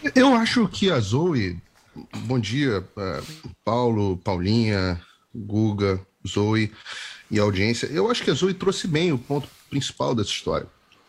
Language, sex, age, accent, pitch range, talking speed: Portuguese, male, 40-59, Brazilian, 105-160 Hz, 140 wpm